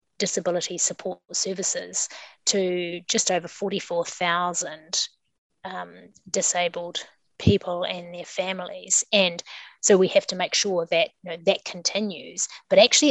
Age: 30-49